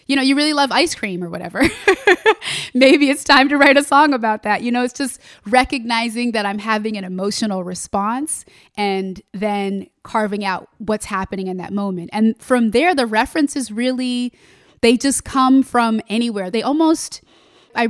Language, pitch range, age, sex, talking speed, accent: English, 195-245 Hz, 20-39, female, 170 wpm, American